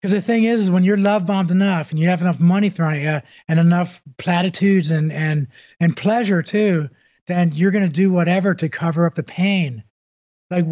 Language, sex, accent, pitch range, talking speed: English, male, American, 165-200 Hz, 205 wpm